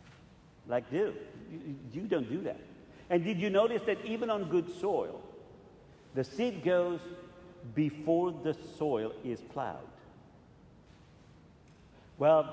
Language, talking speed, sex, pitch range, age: English, 115 wpm, male, 130-175 Hz, 50-69